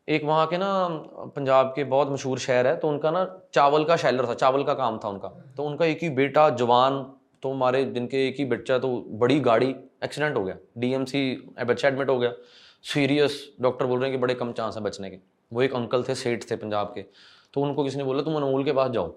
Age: 20-39